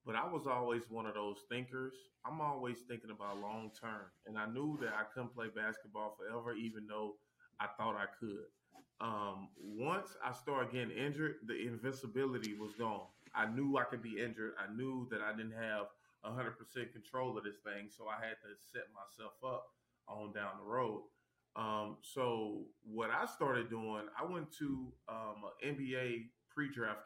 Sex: male